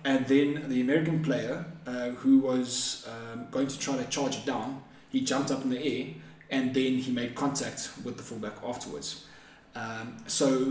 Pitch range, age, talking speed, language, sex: 125-155 Hz, 20-39, 185 wpm, English, male